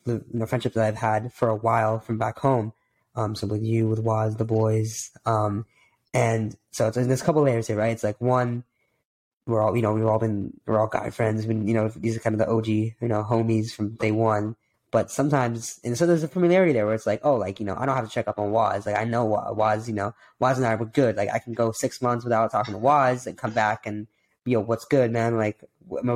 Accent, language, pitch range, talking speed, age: American, English, 105-120 Hz, 275 wpm, 10-29